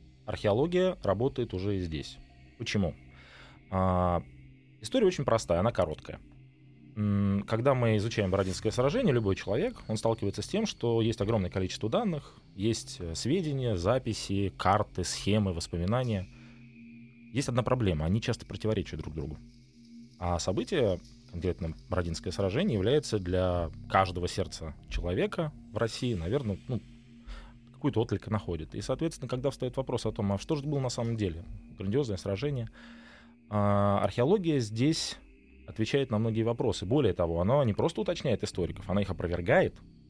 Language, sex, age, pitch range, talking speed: Russian, male, 20-39, 90-125 Hz, 135 wpm